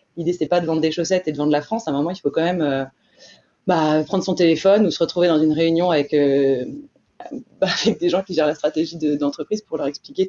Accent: French